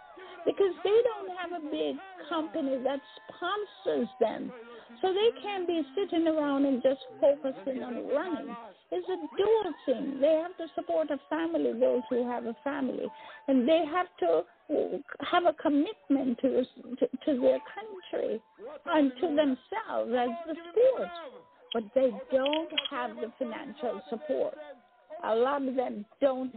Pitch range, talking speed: 250-330 Hz, 145 wpm